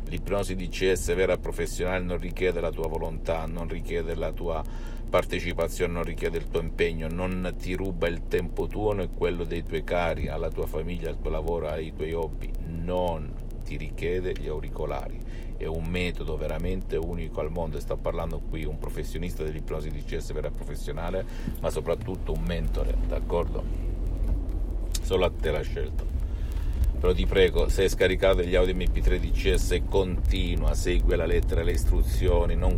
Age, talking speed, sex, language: 50-69, 165 wpm, male, Italian